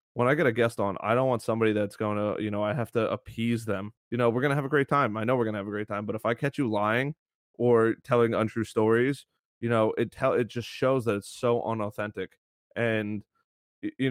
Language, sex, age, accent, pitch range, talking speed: English, male, 20-39, American, 105-120 Hz, 260 wpm